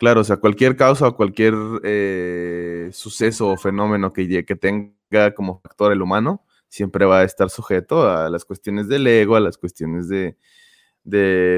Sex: male